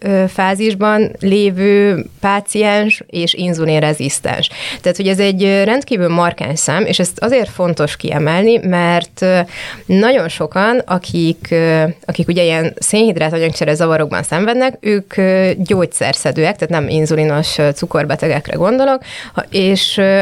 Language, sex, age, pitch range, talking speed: Hungarian, female, 20-39, 160-200 Hz, 105 wpm